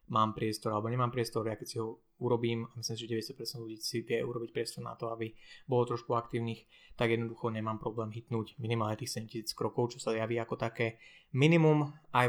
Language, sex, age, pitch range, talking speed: Slovak, male, 20-39, 110-120 Hz, 200 wpm